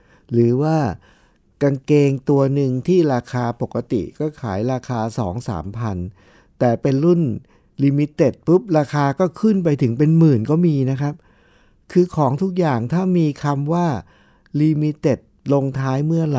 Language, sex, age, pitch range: Thai, male, 60-79, 105-150 Hz